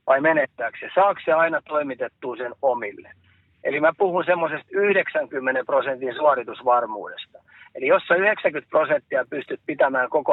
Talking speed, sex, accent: 140 wpm, male, native